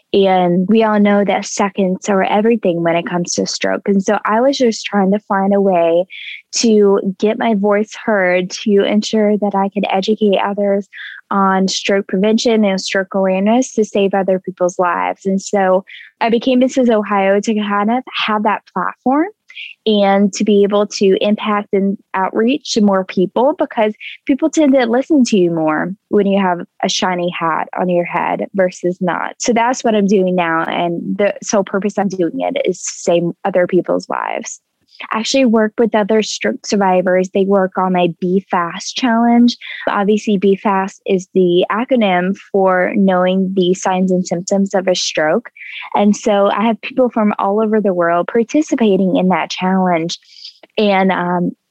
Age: 10-29